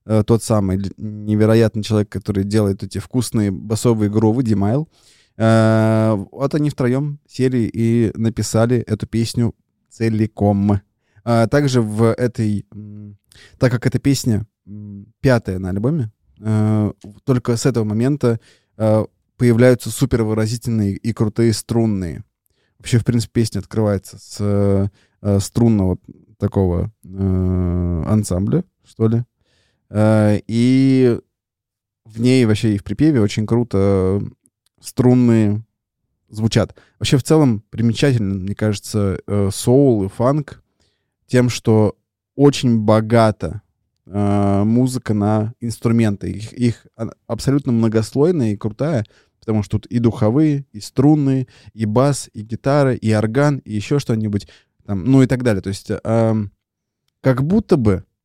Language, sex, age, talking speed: Russian, male, 20-39, 110 wpm